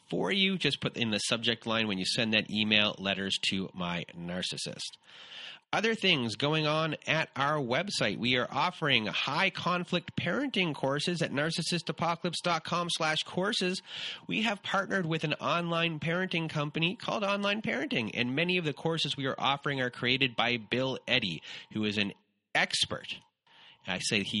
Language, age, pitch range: English, 30-49, 115-180 Hz